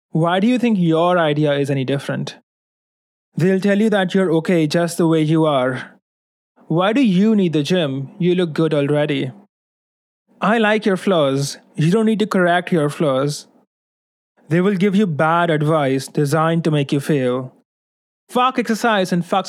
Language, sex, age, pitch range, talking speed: English, male, 20-39, 155-190 Hz, 170 wpm